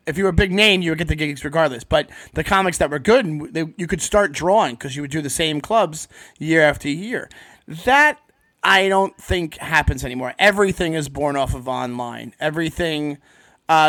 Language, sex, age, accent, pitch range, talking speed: English, male, 30-49, American, 150-185 Hz, 200 wpm